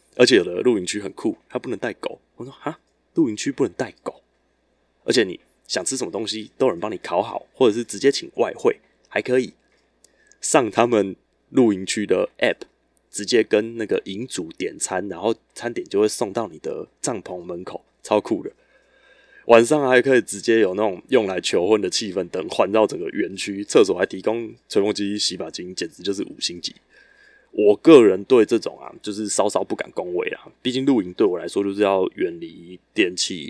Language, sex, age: Chinese, male, 20-39